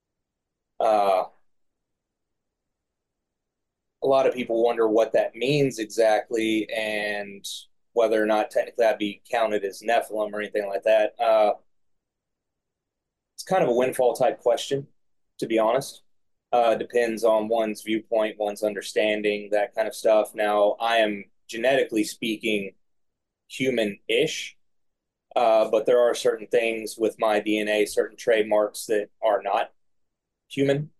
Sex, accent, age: male, American, 30-49